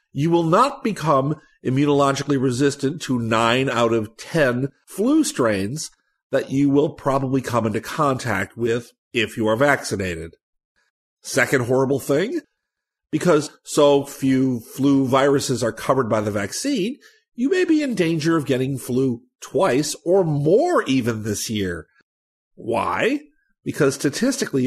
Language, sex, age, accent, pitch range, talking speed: English, male, 50-69, American, 120-165 Hz, 135 wpm